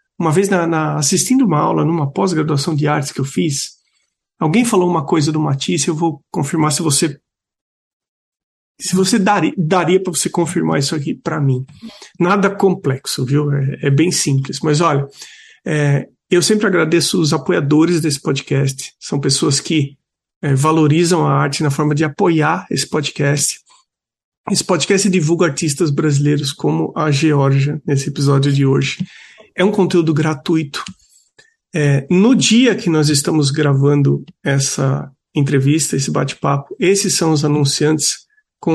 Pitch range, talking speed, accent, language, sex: 145-180 Hz, 140 wpm, Brazilian, Portuguese, male